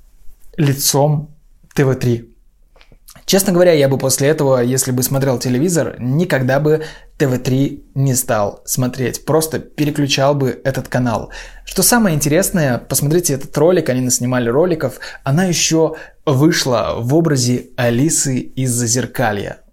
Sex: male